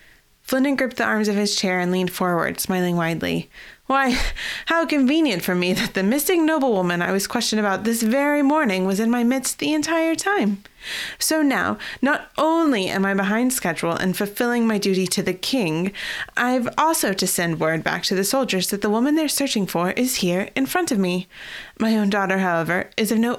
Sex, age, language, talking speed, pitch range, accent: female, 20-39, English, 200 wpm, 180-250 Hz, American